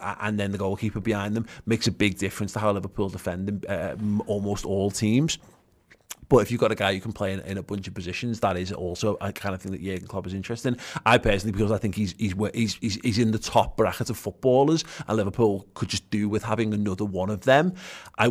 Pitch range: 100-120 Hz